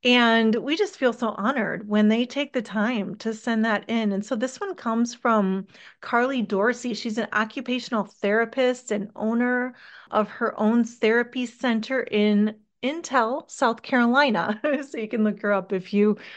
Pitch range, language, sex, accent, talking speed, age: 215-260 Hz, English, female, American, 170 wpm, 30-49